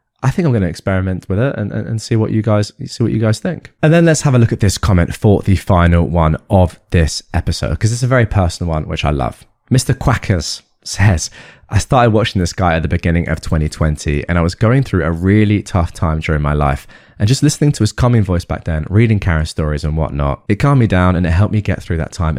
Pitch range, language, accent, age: 85-115 Hz, English, British, 20-39